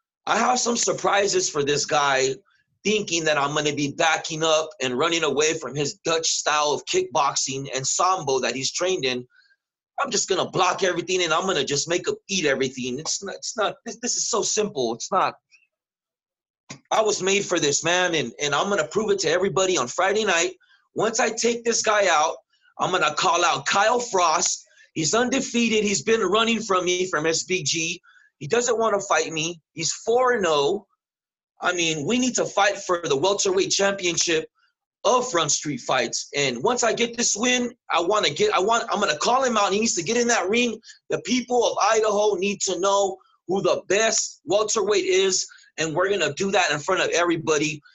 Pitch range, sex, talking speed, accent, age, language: 155-225 Hz, male, 210 wpm, American, 30-49, English